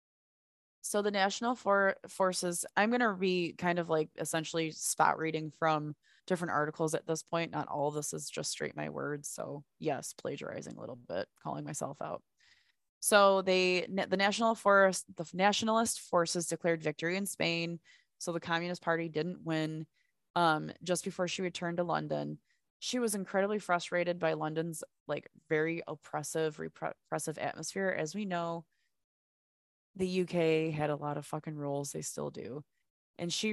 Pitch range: 155-195 Hz